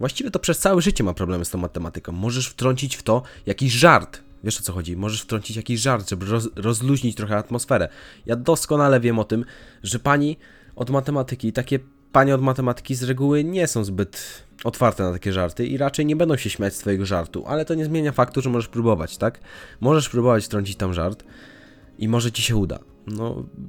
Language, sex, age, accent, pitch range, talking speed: Polish, male, 20-39, native, 95-125 Hz, 200 wpm